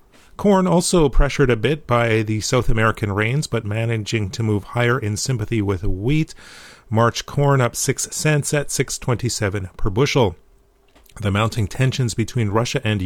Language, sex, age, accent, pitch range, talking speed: English, male, 40-59, American, 105-130 Hz, 155 wpm